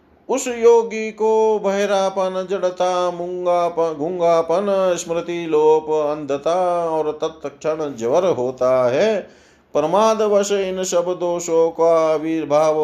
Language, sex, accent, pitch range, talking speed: Hindi, male, native, 155-195 Hz, 100 wpm